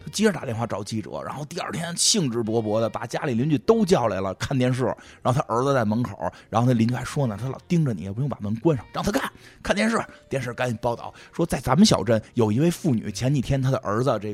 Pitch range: 115-185 Hz